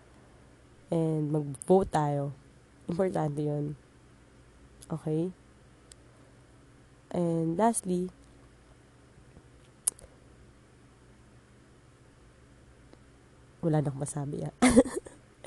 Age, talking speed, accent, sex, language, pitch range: 20-39, 45 wpm, native, female, Filipino, 145-180 Hz